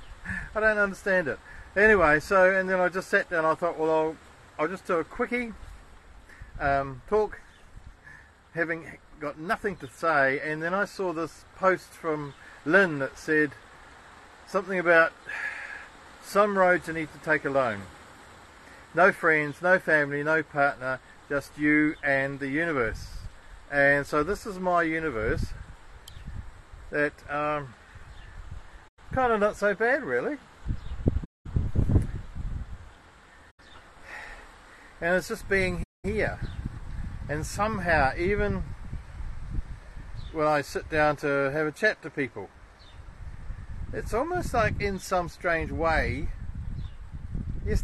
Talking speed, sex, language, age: 125 wpm, male, English, 50-69